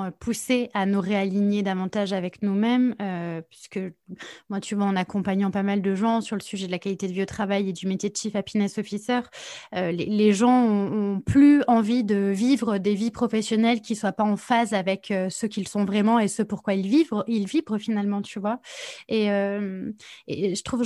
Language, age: French, 20-39